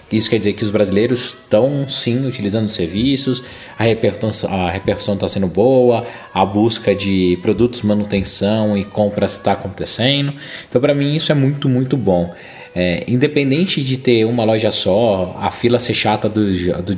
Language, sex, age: Portuguese, male, 20-39